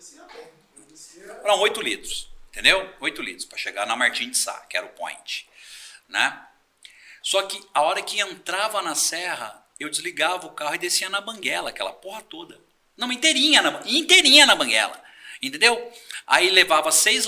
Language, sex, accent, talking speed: Portuguese, male, Brazilian, 165 wpm